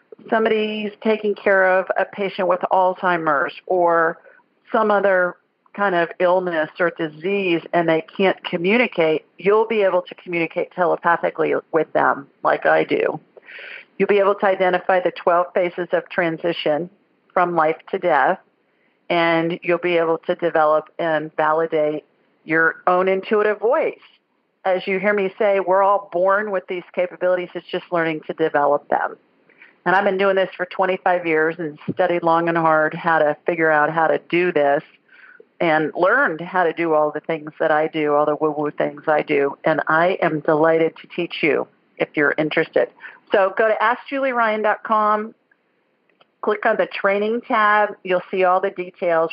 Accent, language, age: American, English, 50-69